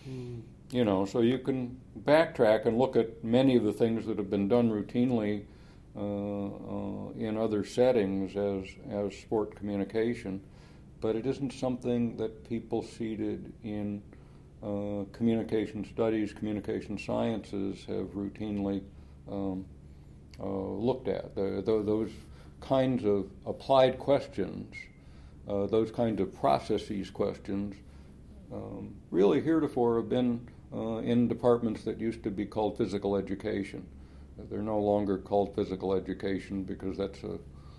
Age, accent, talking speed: 60-79, American, 135 wpm